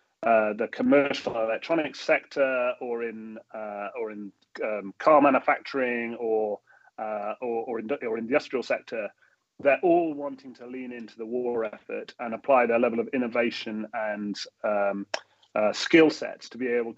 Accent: British